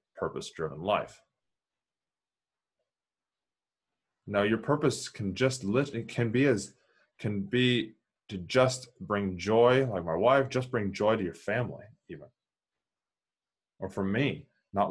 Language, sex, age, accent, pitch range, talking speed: English, male, 20-39, American, 95-120 Hz, 130 wpm